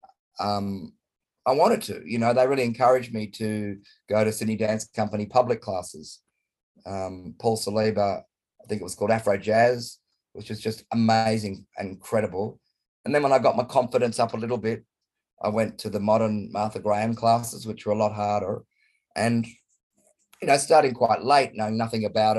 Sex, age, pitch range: male, 30-49, 105-120 Hz